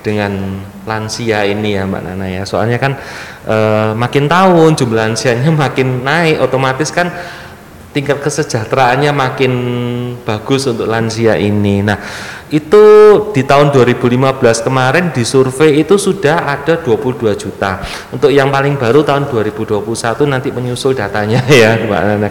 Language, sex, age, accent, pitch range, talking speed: Indonesian, male, 30-49, native, 105-140 Hz, 135 wpm